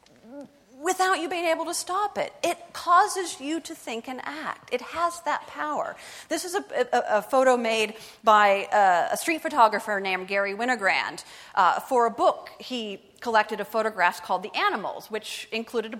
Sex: female